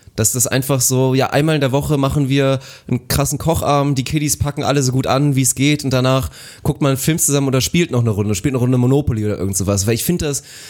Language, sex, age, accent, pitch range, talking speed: German, male, 30-49, German, 115-150 Hz, 270 wpm